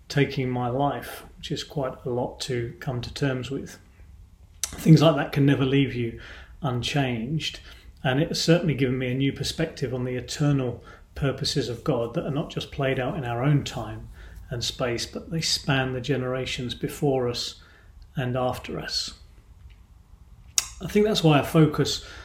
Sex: male